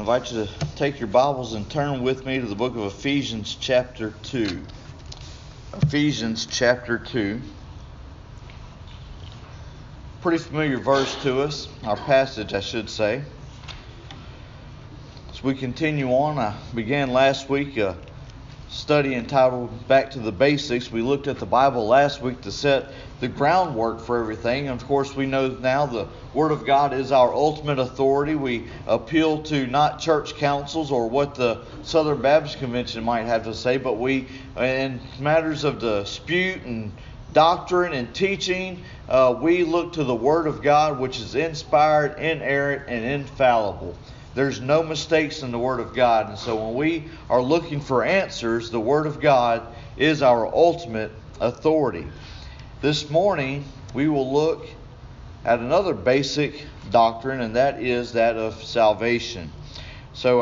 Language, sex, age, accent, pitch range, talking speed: English, male, 40-59, American, 120-145 Hz, 150 wpm